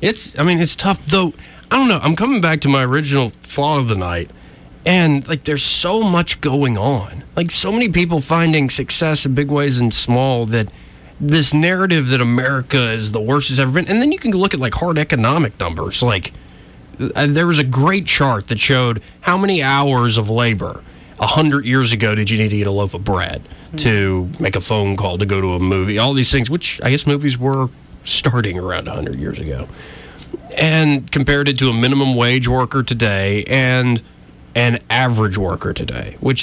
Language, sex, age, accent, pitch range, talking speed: English, male, 30-49, American, 110-150 Hz, 200 wpm